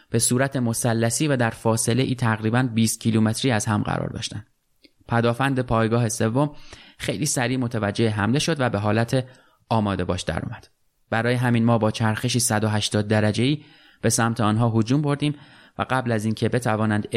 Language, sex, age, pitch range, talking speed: Persian, male, 20-39, 110-130 Hz, 160 wpm